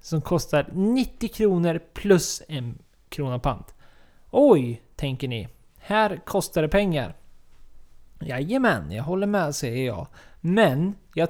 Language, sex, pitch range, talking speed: Swedish, male, 130-170 Hz, 120 wpm